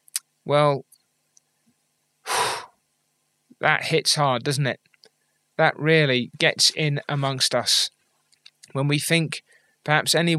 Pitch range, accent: 130-155 Hz, British